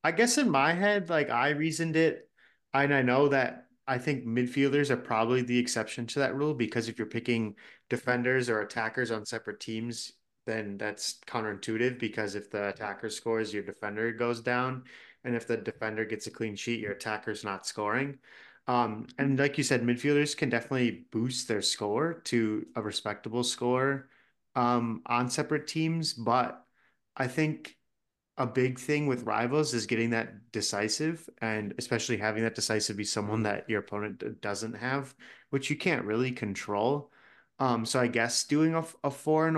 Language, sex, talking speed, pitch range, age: English, male, 175 wpm, 110-140 Hz, 20-39